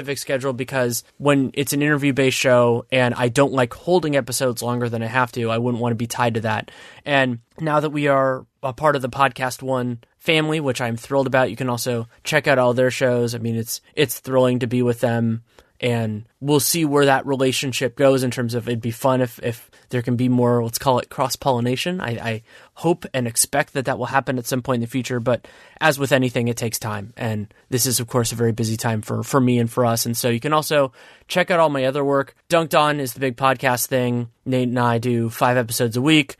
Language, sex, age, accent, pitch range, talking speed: English, male, 20-39, American, 120-140 Hz, 240 wpm